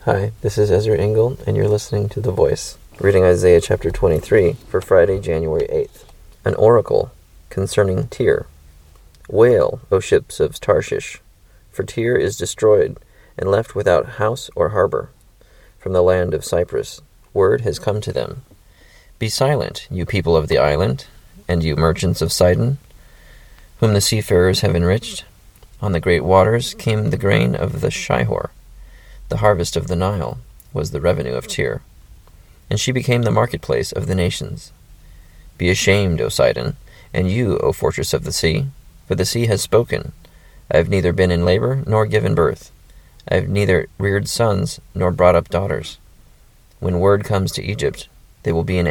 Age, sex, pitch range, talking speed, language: 30-49, male, 90-125 Hz, 165 wpm, English